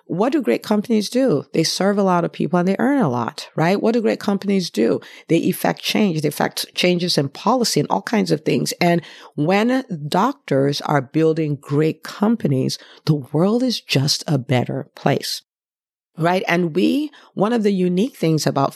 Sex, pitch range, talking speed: female, 145-180 Hz, 185 wpm